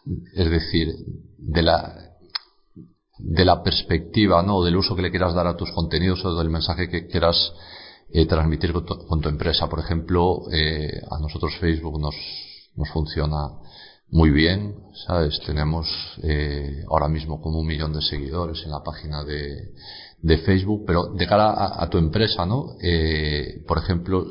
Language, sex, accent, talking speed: Spanish, male, Spanish, 165 wpm